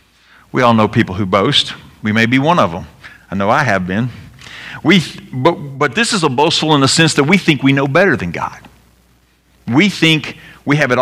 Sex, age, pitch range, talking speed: male, 50-69, 110-155 Hz, 210 wpm